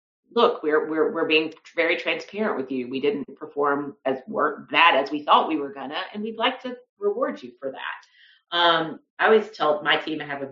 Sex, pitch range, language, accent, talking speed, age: female, 140-220 Hz, English, American, 215 wpm, 40-59